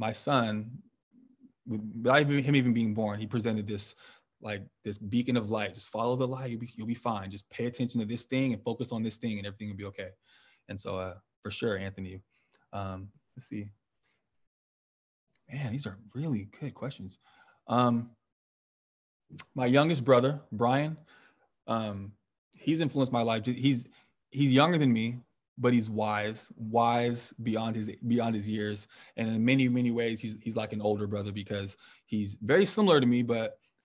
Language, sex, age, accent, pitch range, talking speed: English, male, 20-39, American, 105-125 Hz, 170 wpm